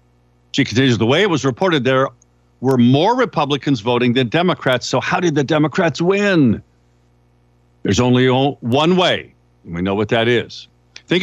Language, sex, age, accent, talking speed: English, male, 50-69, American, 165 wpm